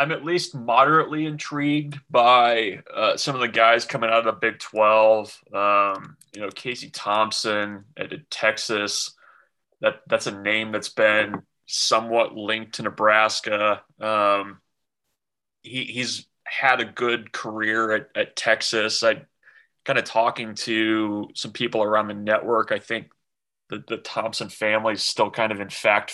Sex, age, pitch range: male, 20-39, 105-120 Hz